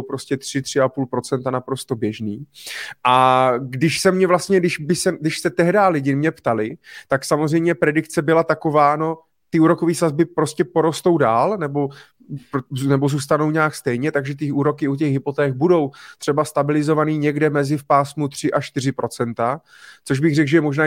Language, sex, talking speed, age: Czech, male, 160 wpm, 30-49